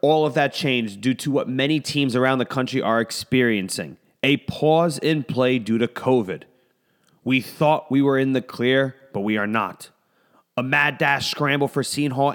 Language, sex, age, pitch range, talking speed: English, male, 30-49, 130-155 Hz, 190 wpm